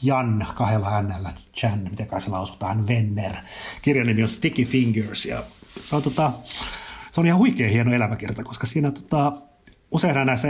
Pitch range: 100-120 Hz